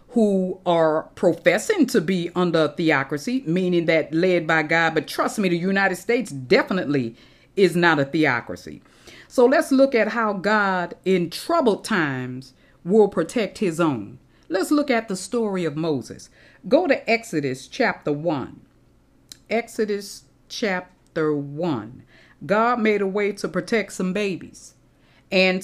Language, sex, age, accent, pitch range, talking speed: English, female, 40-59, American, 165-220 Hz, 140 wpm